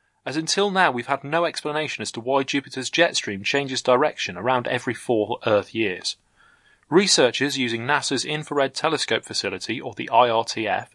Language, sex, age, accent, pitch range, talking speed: English, male, 30-49, British, 110-145 Hz, 160 wpm